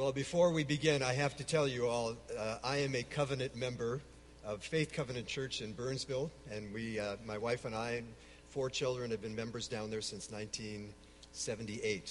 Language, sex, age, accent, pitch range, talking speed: English, male, 50-69, American, 95-130 Hz, 195 wpm